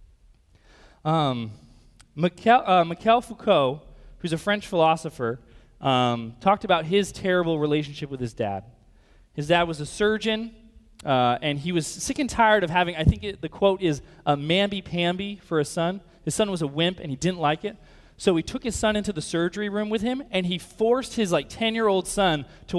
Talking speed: 190 wpm